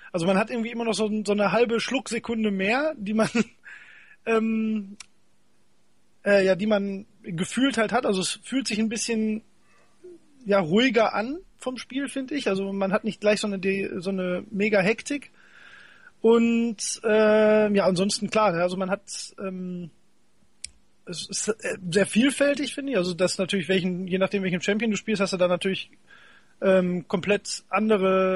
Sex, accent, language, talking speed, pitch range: male, German, German, 165 wpm, 190-220 Hz